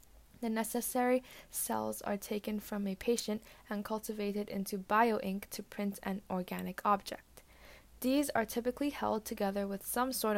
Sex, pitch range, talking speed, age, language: female, 195-230 Hz, 145 wpm, 10-29, English